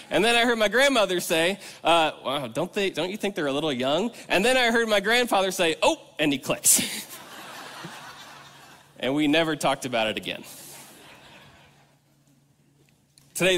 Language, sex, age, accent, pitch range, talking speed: English, male, 20-39, American, 155-205 Hz, 165 wpm